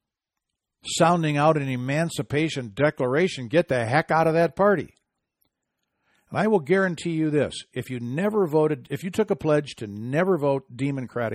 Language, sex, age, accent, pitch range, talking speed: English, male, 60-79, American, 115-145 Hz, 165 wpm